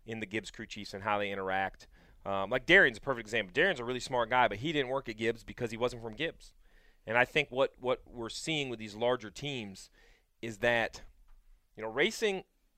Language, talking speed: English, 220 wpm